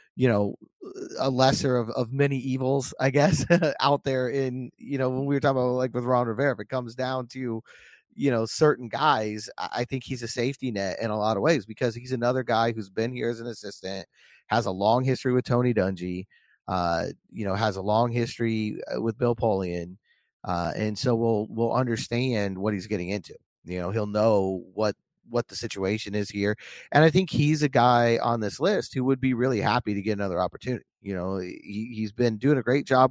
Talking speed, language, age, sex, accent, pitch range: 210 wpm, English, 30-49, male, American, 110-130 Hz